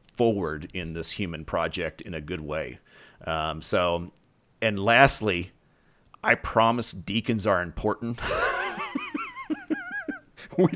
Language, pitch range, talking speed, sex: English, 90-115 Hz, 105 wpm, male